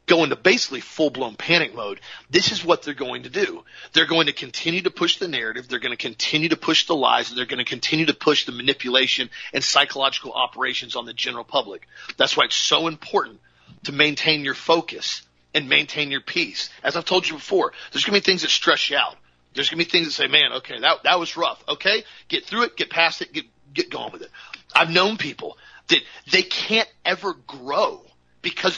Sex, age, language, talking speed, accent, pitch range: male, 40-59, English, 220 wpm, American, 145-185 Hz